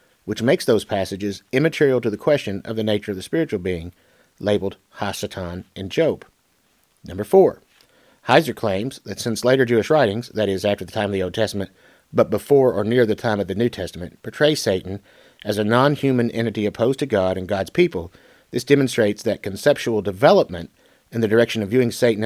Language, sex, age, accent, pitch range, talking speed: English, male, 50-69, American, 105-130 Hz, 190 wpm